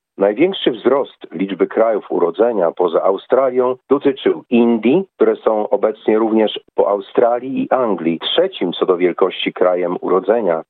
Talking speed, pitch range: 130 wpm, 100-135 Hz